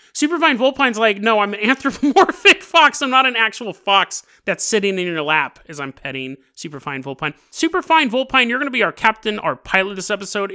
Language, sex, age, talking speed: English, male, 30-49, 200 wpm